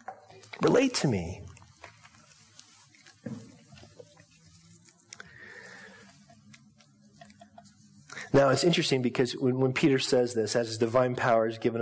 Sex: male